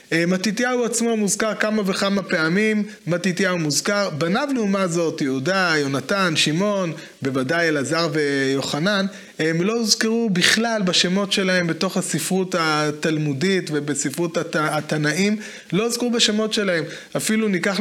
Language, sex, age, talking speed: Hebrew, male, 30-49, 120 wpm